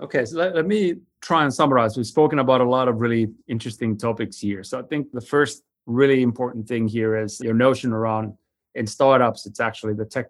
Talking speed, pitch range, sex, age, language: 215 wpm, 110-125 Hz, male, 20-39, English